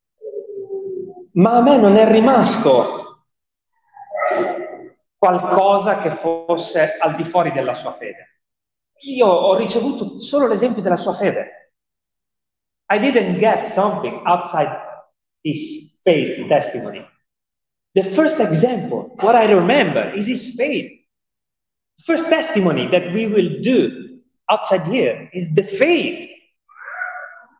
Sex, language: male, Italian